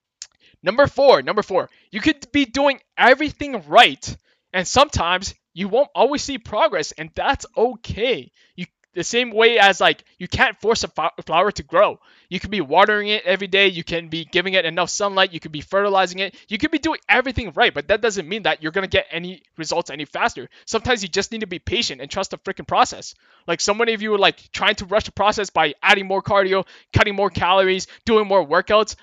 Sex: male